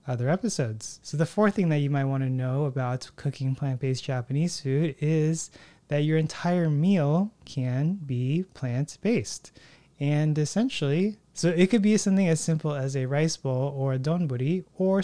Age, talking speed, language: 20-39, 170 wpm, English